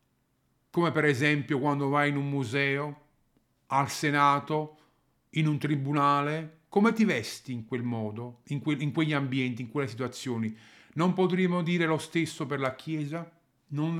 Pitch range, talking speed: 125-155 Hz, 145 wpm